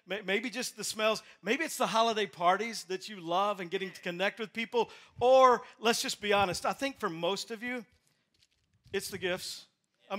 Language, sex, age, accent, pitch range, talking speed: English, male, 50-69, American, 185-230 Hz, 195 wpm